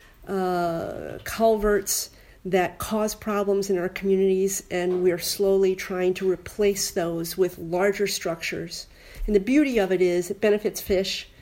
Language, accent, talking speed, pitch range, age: English, American, 145 wpm, 185-220 Hz, 50-69